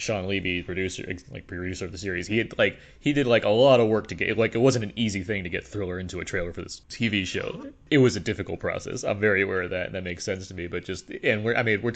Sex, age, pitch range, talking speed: male, 30-49, 90-110 Hz, 295 wpm